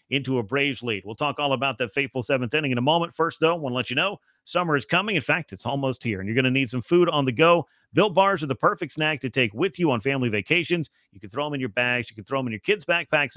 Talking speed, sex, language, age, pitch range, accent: 305 wpm, male, English, 40-59, 130-170 Hz, American